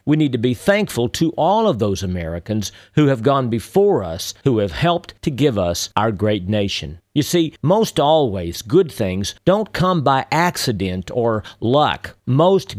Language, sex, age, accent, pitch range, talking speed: English, male, 50-69, American, 105-175 Hz, 175 wpm